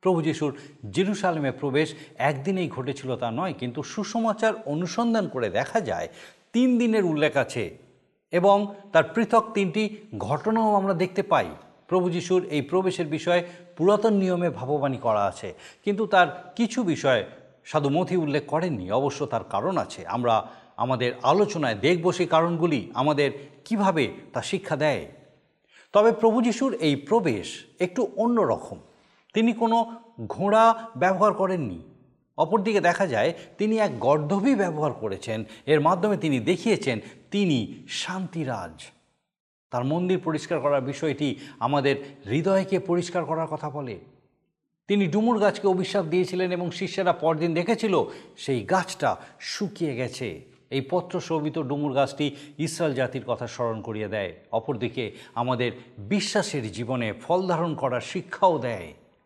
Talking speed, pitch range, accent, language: 130 wpm, 145-200 Hz, native, Bengali